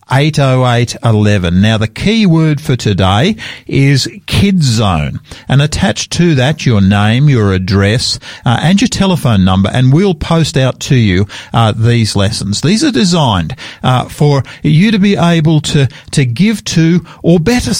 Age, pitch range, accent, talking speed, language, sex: 50-69, 120-165 Hz, Australian, 170 wpm, English, male